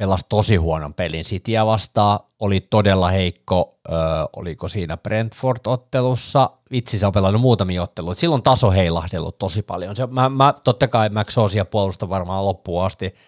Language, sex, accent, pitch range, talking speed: Finnish, male, native, 100-130 Hz, 160 wpm